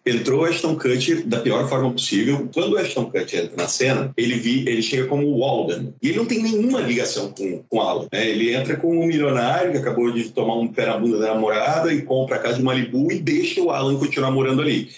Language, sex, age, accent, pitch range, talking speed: Portuguese, male, 40-59, Brazilian, 120-170 Hz, 235 wpm